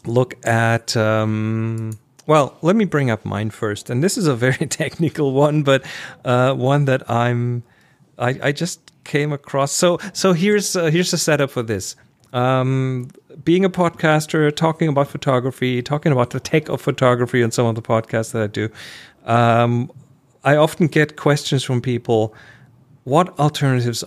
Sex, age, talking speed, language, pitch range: male, 40-59, 165 wpm, English, 110-145 Hz